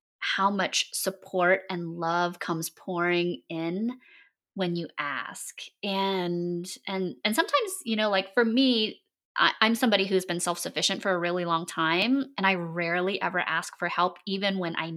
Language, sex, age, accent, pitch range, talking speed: English, female, 20-39, American, 175-200 Hz, 165 wpm